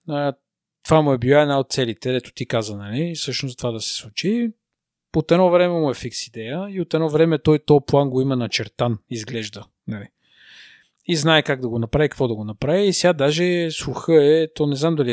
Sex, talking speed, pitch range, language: male, 215 wpm, 120-155 Hz, Bulgarian